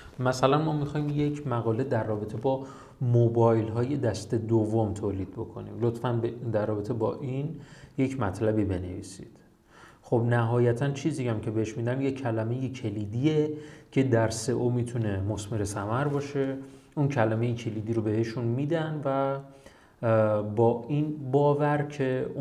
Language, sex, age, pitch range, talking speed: Persian, male, 30-49, 110-145 Hz, 135 wpm